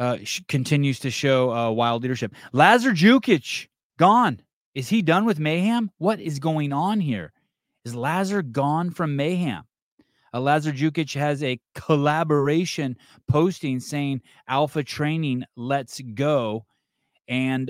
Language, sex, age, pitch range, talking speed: English, male, 20-39, 120-160 Hz, 130 wpm